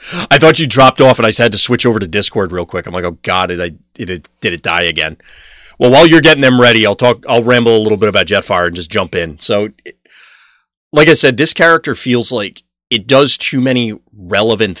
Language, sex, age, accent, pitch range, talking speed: English, male, 30-49, American, 90-125 Hz, 245 wpm